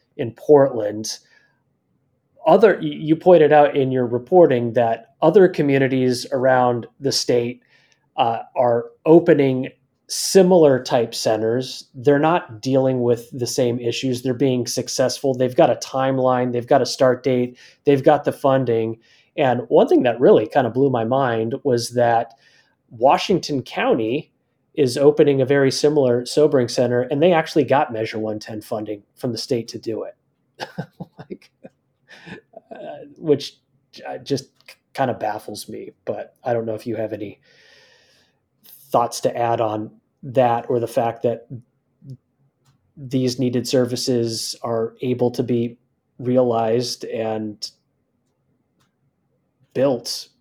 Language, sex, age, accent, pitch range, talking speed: English, male, 30-49, American, 115-140 Hz, 135 wpm